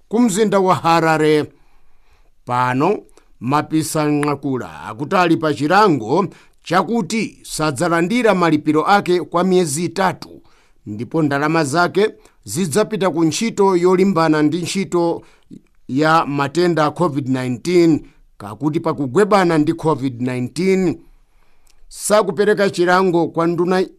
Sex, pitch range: male, 150-195 Hz